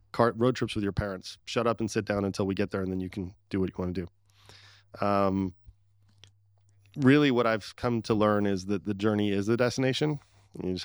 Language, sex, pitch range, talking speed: English, male, 95-105 Hz, 225 wpm